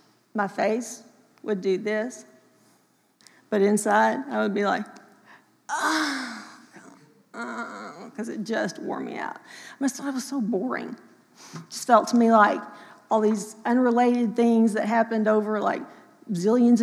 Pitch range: 205-230 Hz